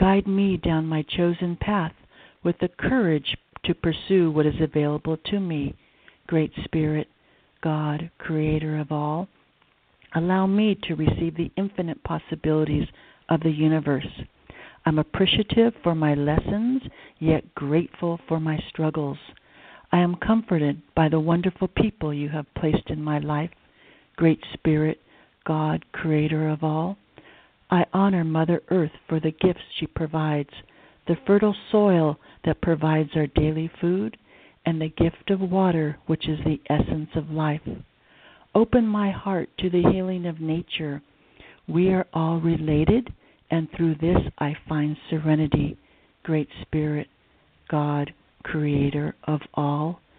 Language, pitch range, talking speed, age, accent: English, 155-180 Hz, 135 wpm, 60-79, American